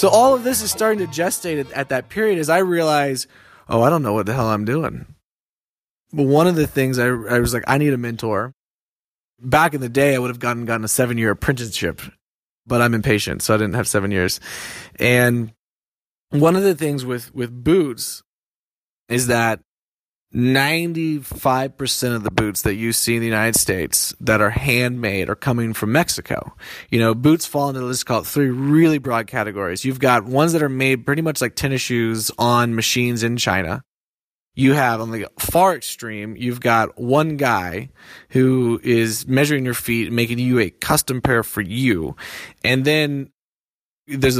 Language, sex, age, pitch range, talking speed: English, male, 20-39, 115-140 Hz, 185 wpm